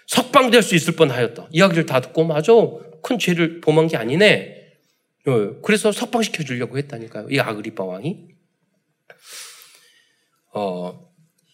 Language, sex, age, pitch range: Korean, male, 40-59, 150-225 Hz